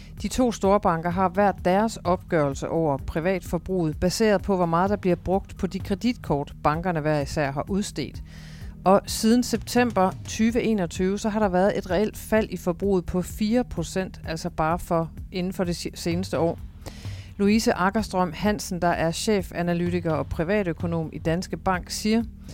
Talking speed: 165 wpm